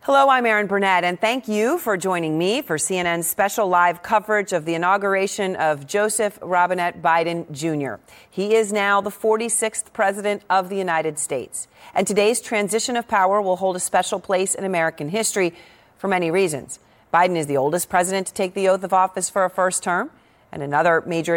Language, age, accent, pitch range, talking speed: English, 40-59, American, 170-205 Hz, 190 wpm